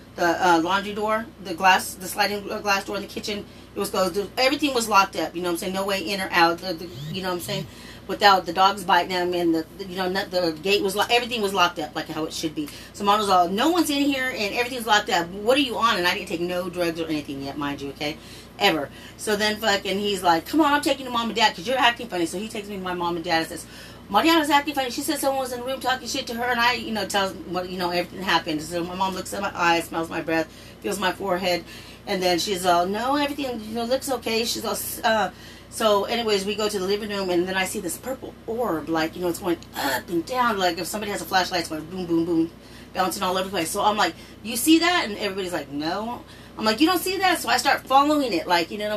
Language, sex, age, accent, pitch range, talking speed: English, female, 30-49, American, 175-225 Hz, 280 wpm